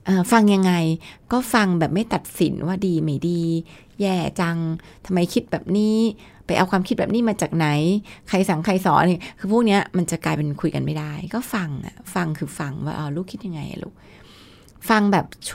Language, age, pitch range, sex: Thai, 20-39, 160-200 Hz, female